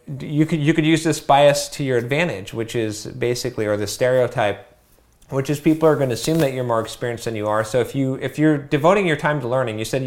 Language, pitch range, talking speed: English, 110-135 Hz, 250 wpm